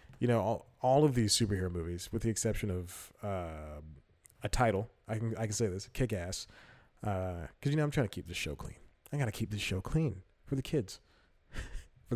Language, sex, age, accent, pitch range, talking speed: English, male, 30-49, American, 95-115 Hz, 210 wpm